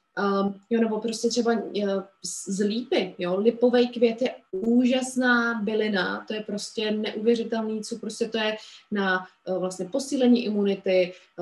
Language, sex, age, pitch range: Czech, female, 20-39, 195-230 Hz